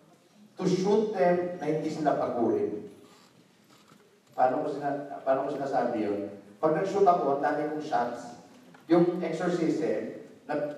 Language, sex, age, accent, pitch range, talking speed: Filipino, male, 50-69, native, 125-175 Hz, 130 wpm